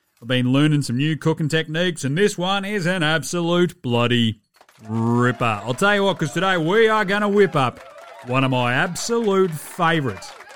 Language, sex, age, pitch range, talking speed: English, male, 30-49, 140-190 Hz, 180 wpm